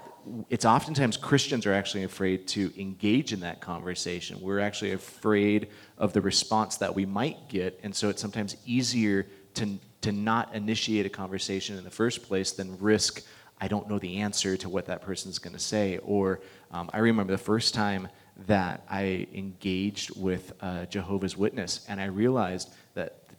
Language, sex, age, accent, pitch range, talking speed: English, male, 30-49, American, 95-115 Hz, 175 wpm